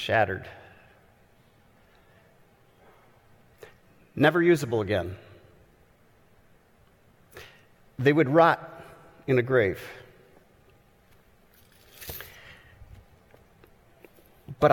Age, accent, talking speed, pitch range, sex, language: 50-69, American, 45 wpm, 110-145 Hz, male, English